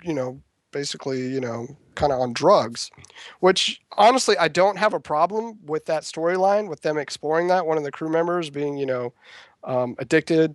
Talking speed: 190 wpm